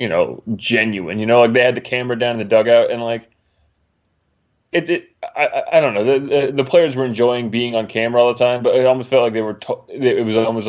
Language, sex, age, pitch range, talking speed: English, male, 20-39, 105-125 Hz, 255 wpm